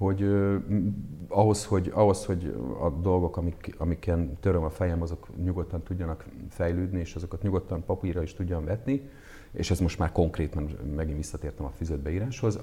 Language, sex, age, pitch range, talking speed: Hungarian, male, 40-59, 80-100 Hz, 155 wpm